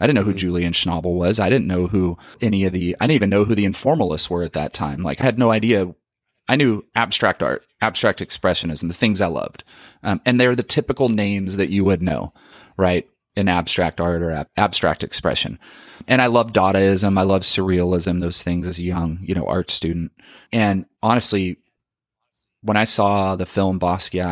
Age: 30-49